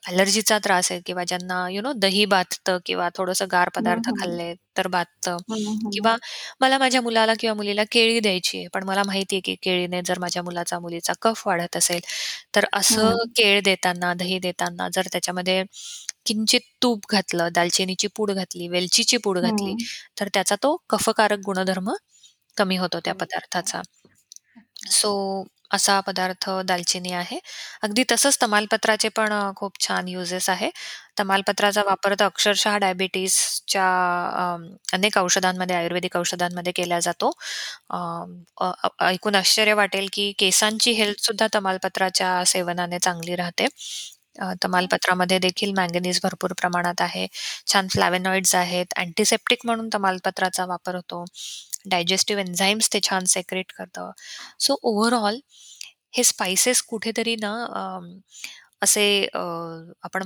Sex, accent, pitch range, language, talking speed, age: female, native, 180-215 Hz, Marathi, 125 wpm, 20-39